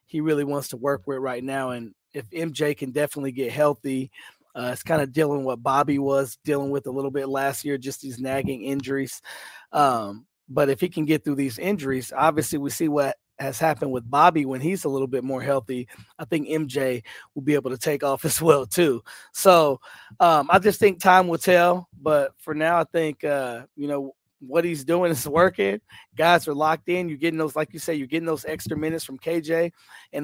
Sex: male